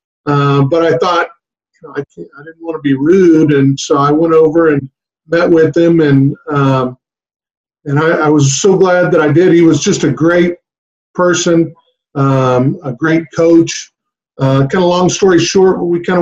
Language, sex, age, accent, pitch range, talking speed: English, male, 50-69, American, 145-170 Hz, 190 wpm